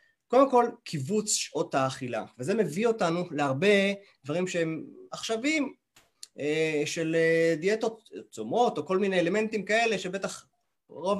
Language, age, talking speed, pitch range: Hebrew, 30-49, 120 wpm, 150-205 Hz